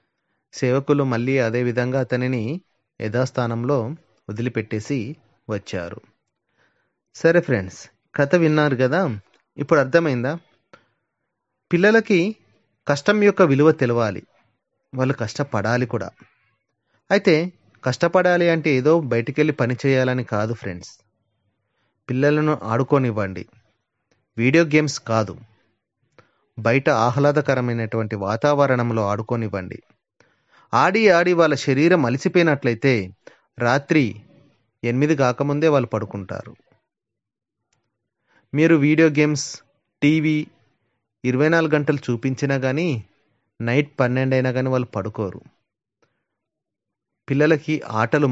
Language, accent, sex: Telugu, native, male